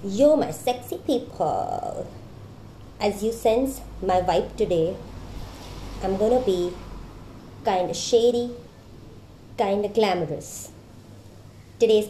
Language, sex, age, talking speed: English, male, 30-49, 90 wpm